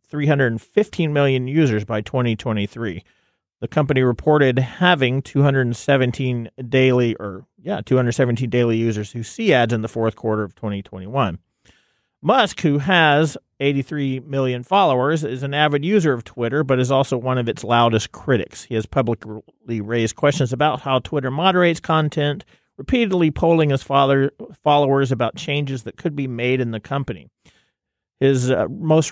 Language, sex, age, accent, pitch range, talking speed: English, male, 40-59, American, 120-155 Hz, 145 wpm